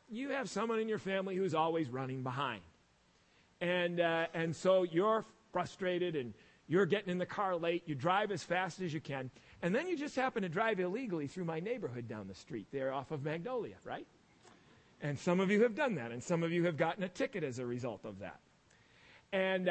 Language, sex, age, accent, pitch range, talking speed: English, male, 40-59, American, 140-185 Hz, 215 wpm